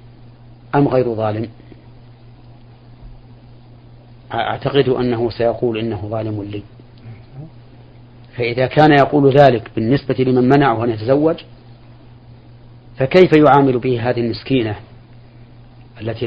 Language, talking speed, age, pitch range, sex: Arabic, 90 wpm, 40-59, 120-125 Hz, male